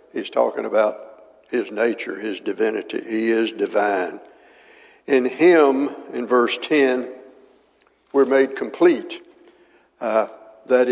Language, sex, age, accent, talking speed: English, male, 60-79, American, 110 wpm